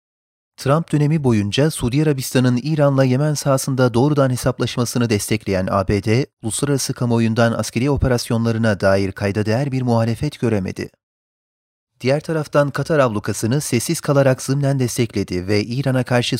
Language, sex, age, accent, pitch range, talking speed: Turkish, male, 40-59, native, 110-130 Hz, 120 wpm